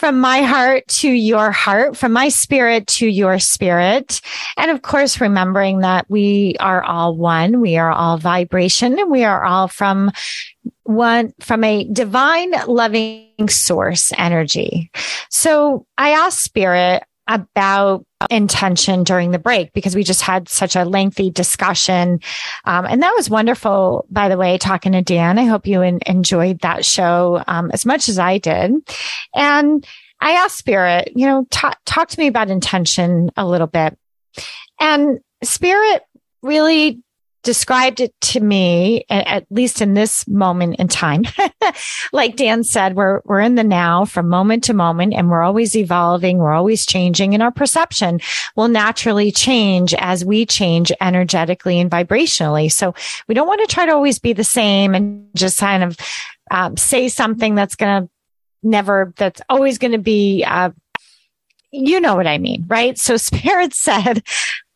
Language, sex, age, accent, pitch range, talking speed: English, female, 30-49, American, 180-245 Hz, 160 wpm